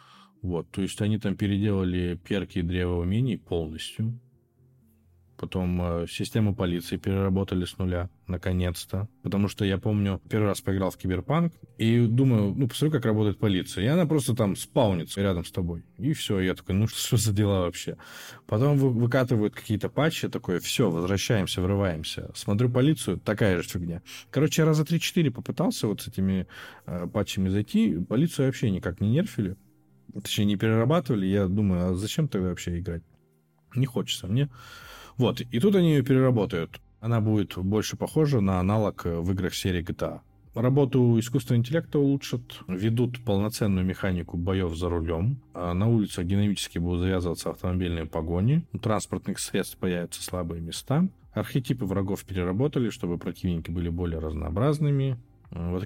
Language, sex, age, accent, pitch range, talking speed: Russian, male, 20-39, native, 90-120 Hz, 155 wpm